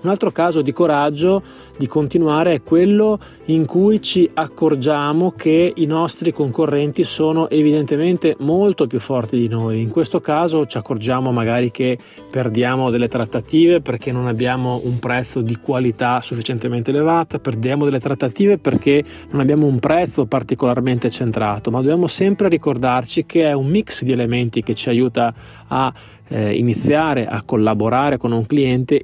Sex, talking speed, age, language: male, 150 wpm, 20-39, Italian